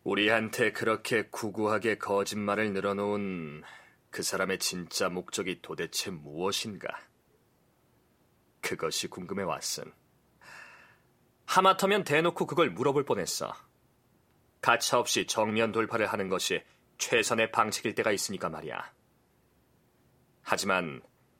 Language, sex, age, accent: Korean, male, 30-49, native